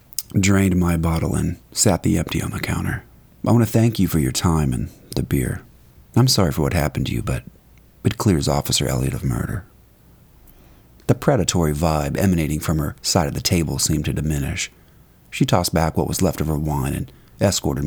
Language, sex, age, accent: English, male, 40-59, American